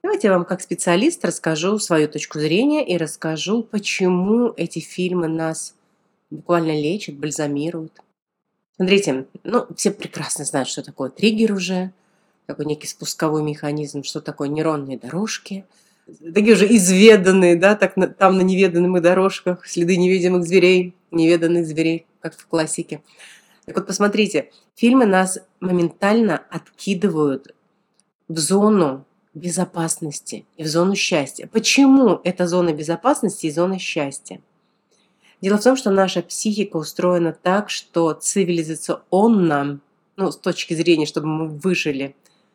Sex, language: female, Russian